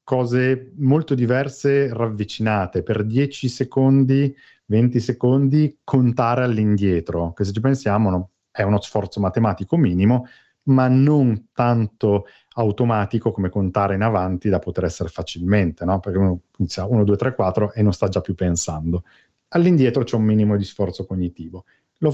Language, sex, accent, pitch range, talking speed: Italian, male, native, 100-135 Hz, 145 wpm